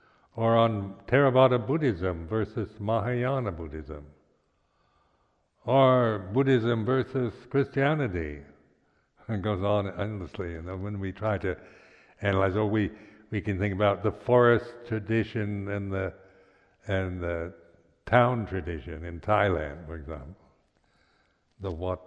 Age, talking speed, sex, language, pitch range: 60-79, 115 wpm, male, English, 90-110 Hz